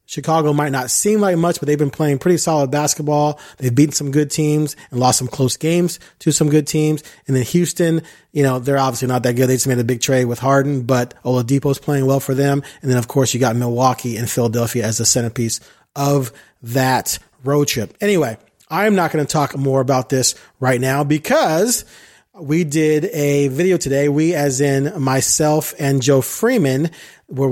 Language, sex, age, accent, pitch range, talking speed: English, male, 30-49, American, 130-175 Hz, 205 wpm